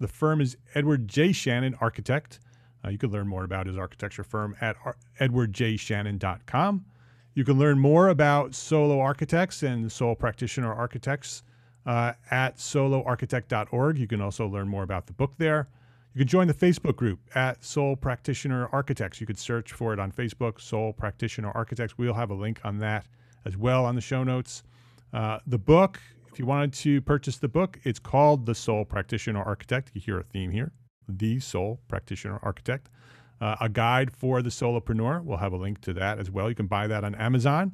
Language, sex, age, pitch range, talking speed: English, male, 40-59, 110-135 Hz, 190 wpm